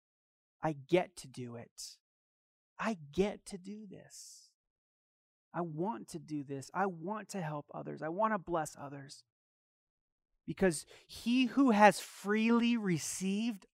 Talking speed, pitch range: 135 wpm, 155-220 Hz